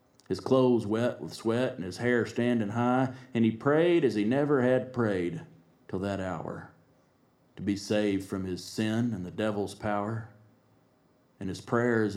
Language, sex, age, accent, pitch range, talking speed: English, male, 40-59, American, 95-115 Hz, 170 wpm